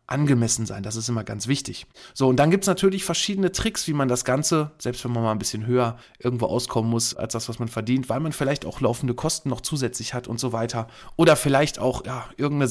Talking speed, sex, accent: 240 wpm, male, German